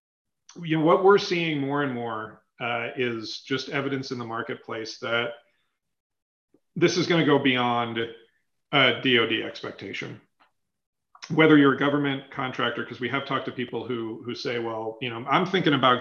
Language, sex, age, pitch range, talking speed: English, male, 40-59, 115-140 Hz, 170 wpm